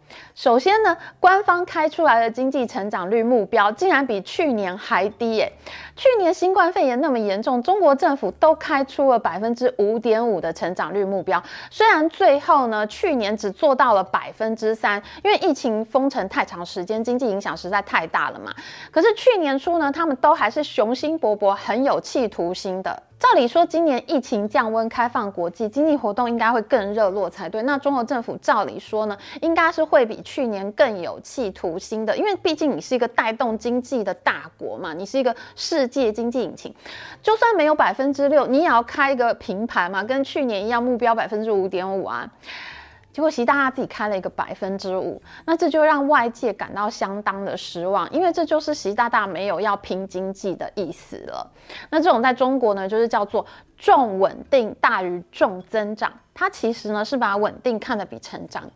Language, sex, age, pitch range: Chinese, female, 20-39, 205-300 Hz